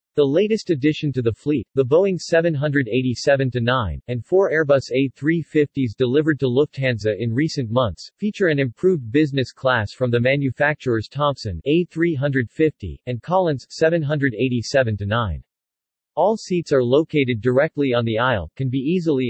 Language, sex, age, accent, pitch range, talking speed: English, male, 40-59, American, 120-155 Hz, 135 wpm